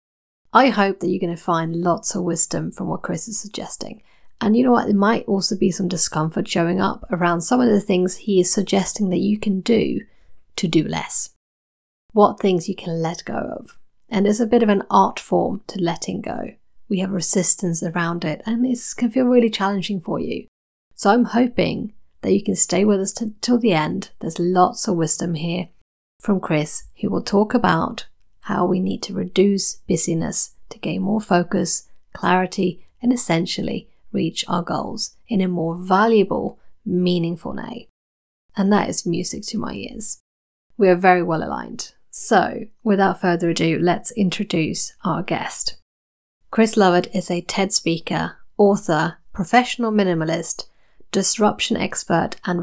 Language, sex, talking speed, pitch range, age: English, female, 170 wpm, 170-210 Hz, 30-49